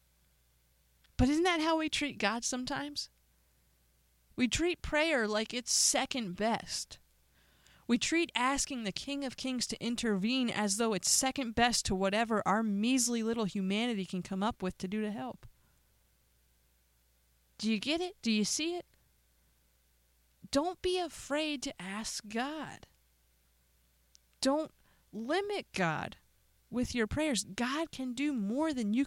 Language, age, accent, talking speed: English, 30-49, American, 140 wpm